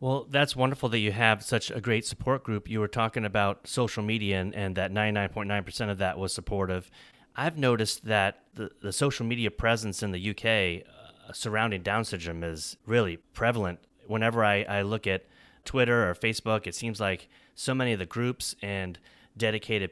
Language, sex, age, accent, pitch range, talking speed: English, male, 30-49, American, 95-115 Hz, 185 wpm